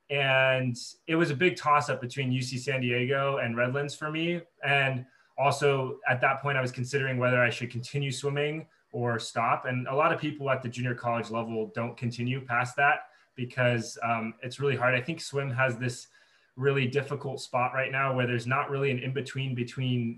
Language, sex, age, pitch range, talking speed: English, male, 20-39, 125-140 Hz, 195 wpm